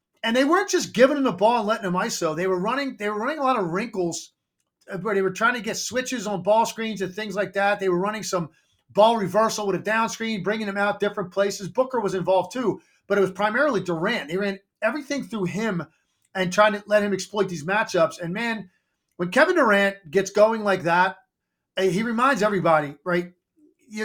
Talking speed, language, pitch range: 215 wpm, English, 185-225 Hz